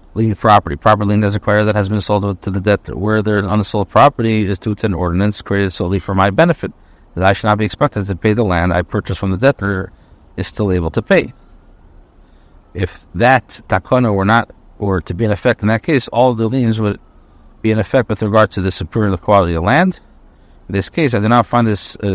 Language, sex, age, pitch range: English, male, 60-79, 95-125 Hz